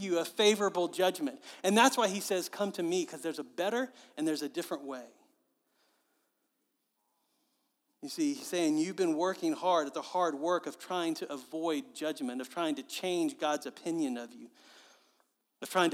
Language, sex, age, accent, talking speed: English, male, 40-59, American, 180 wpm